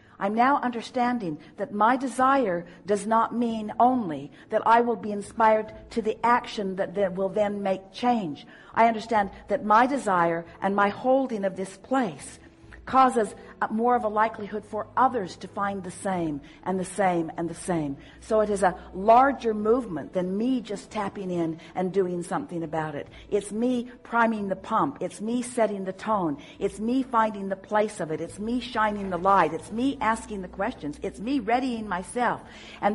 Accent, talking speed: American, 180 wpm